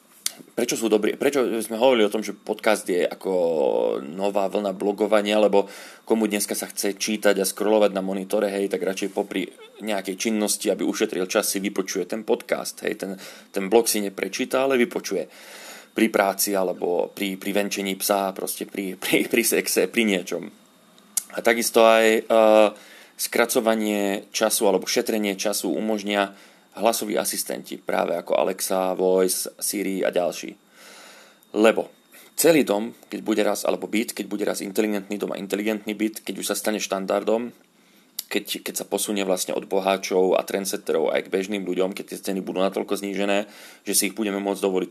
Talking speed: 165 wpm